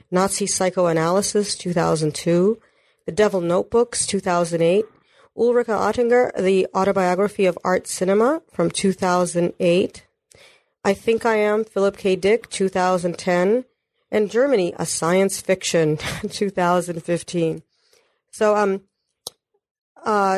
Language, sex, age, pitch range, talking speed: English, female, 40-59, 175-210 Hz, 95 wpm